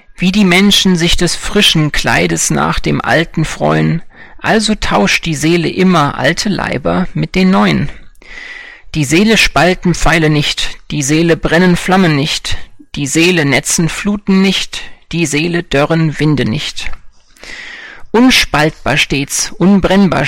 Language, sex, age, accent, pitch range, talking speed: German, male, 40-59, German, 155-190 Hz, 130 wpm